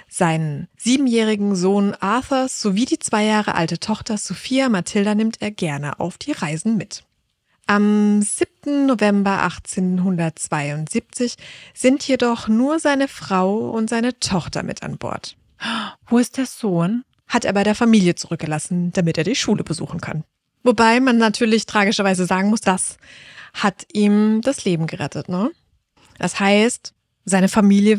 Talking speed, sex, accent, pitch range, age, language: 145 wpm, female, German, 175-235 Hz, 20-39, German